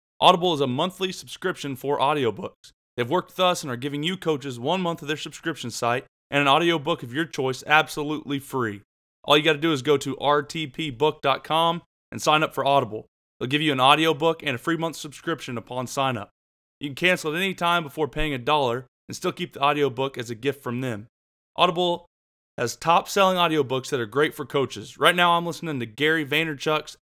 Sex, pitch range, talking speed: male, 130-160 Hz, 205 wpm